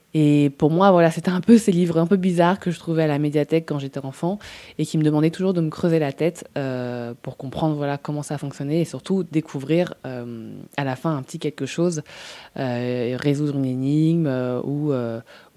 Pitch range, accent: 140-180 Hz, French